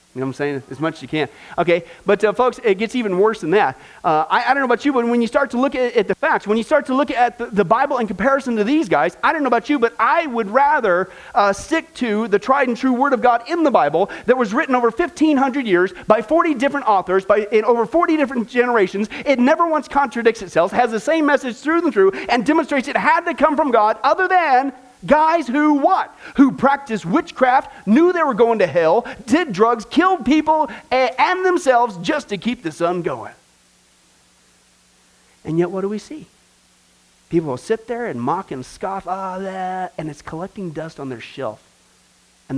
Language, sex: English, male